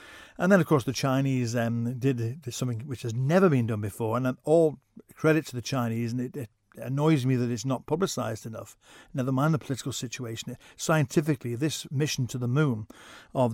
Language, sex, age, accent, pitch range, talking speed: English, male, 50-69, British, 120-155 Hz, 190 wpm